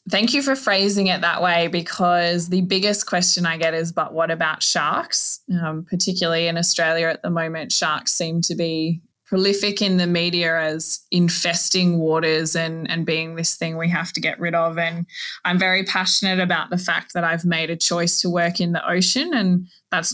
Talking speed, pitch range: 195 wpm, 160-185 Hz